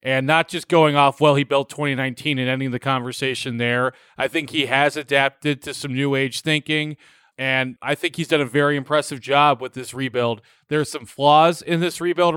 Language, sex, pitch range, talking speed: English, male, 135-165 Hz, 205 wpm